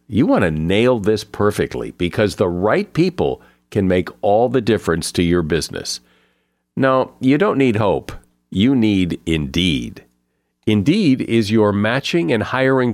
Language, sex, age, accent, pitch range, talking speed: English, male, 50-69, American, 95-130 Hz, 150 wpm